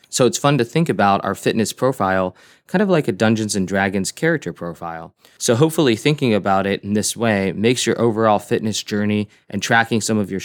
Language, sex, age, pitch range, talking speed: English, male, 20-39, 95-115 Hz, 205 wpm